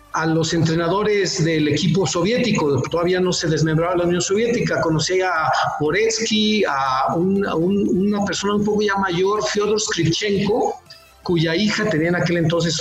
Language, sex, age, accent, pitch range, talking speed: Spanish, male, 50-69, Mexican, 160-205 Hz, 150 wpm